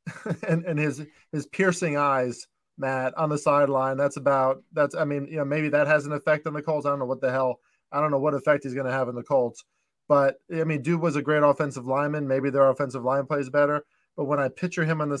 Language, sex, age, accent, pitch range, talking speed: English, male, 20-39, American, 135-160 Hz, 255 wpm